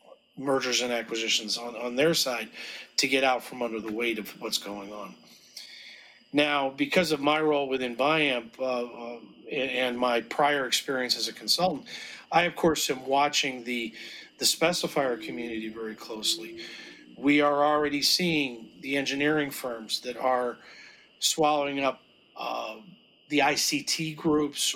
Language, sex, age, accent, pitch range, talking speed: English, male, 40-59, American, 125-150 Hz, 145 wpm